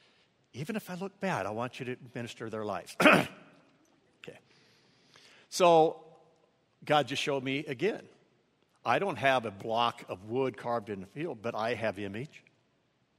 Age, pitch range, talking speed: 60-79, 125-160 Hz, 155 wpm